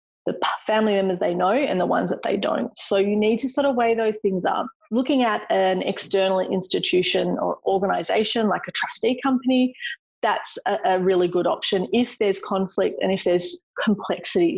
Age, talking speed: 30-49, 185 wpm